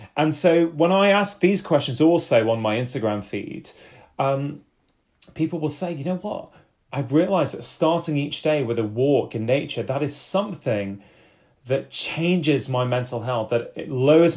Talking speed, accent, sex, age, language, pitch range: 170 wpm, British, male, 30-49, English, 125-165 Hz